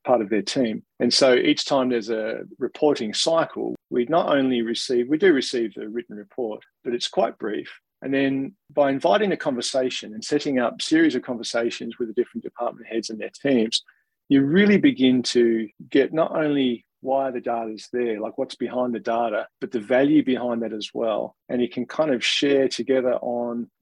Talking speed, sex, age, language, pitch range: 195 wpm, male, 40-59, English, 120-140 Hz